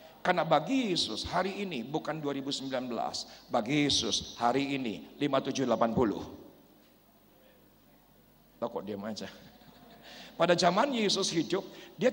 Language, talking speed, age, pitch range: Indonesian, 105 wpm, 50-69, 155-220 Hz